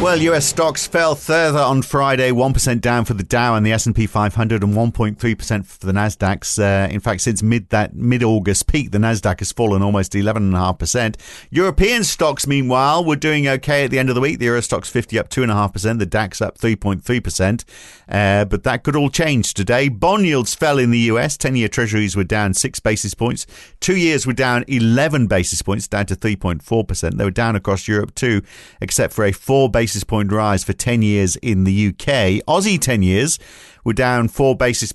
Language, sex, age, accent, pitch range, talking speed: English, male, 40-59, British, 100-125 Hz, 195 wpm